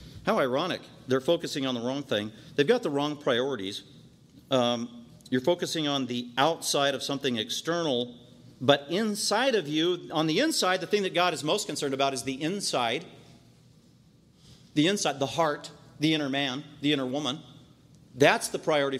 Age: 40-59